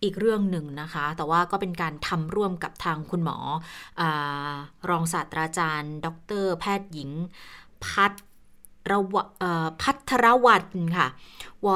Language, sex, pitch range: Thai, female, 170-230 Hz